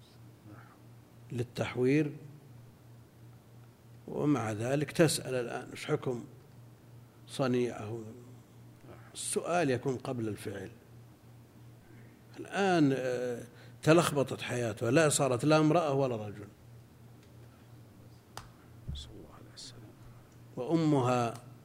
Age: 60-79